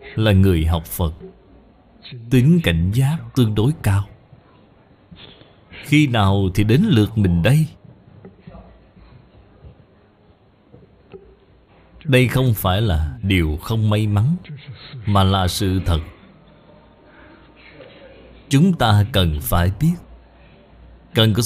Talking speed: 100 wpm